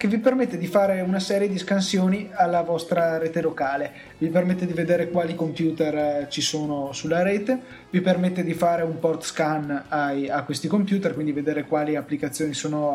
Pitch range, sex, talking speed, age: 160-195 Hz, male, 180 wpm, 20-39